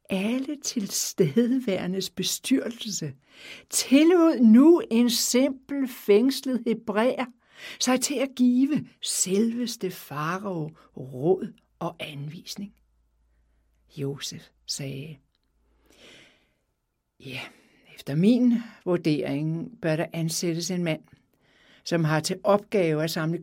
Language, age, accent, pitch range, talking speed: Danish, 60-79, native, 140-205 Hz, 90 wpm